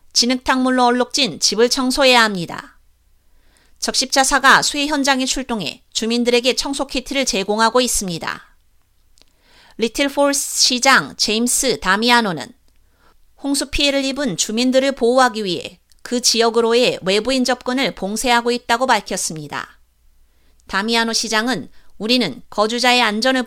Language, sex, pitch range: Korean, female, 210-265 Hz